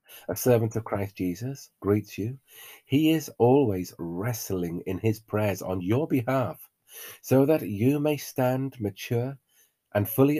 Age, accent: 40-59, British